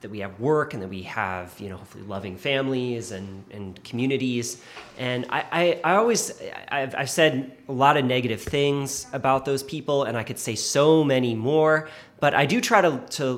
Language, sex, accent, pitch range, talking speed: English, male, American, 115-140 Hz, 200 wpm